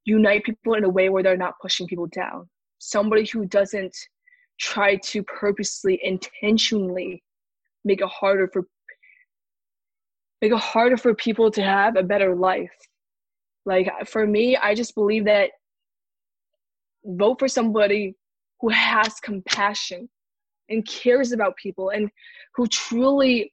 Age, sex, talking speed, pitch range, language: 20-39, female, 135 wpm, 200-240 Hz, English